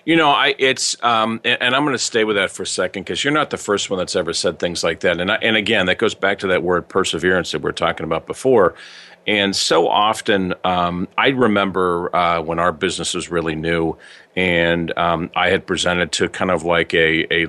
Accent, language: American, English